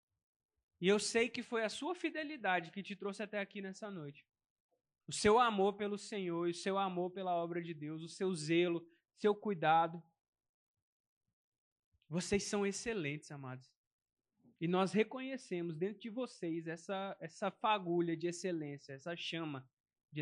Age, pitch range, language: 20-39, 170-205 Hz, Portuguese